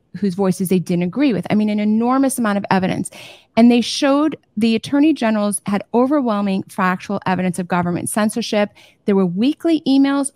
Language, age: English, 30-49